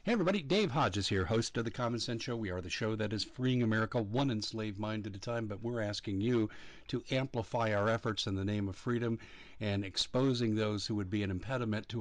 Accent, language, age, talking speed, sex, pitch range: American, English, 50-69, 235 wpm, male, 105-130 Hz